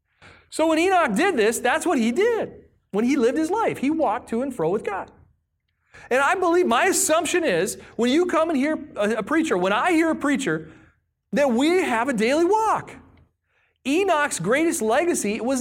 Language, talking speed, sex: English, 190 wpm, male